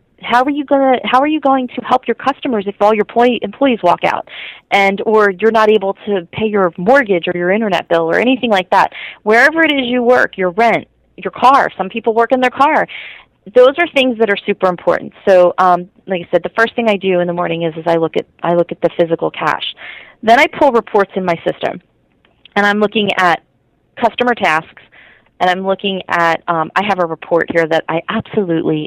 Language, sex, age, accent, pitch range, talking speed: English, female, 30-49, American, 170-230 Hz, 225 wpm